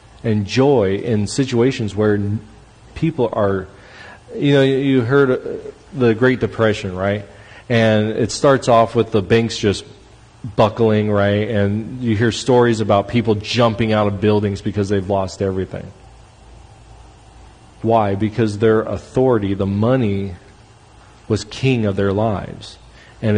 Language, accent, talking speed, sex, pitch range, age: English, American, 130 wpm, male, 105-135 Hz, 40-59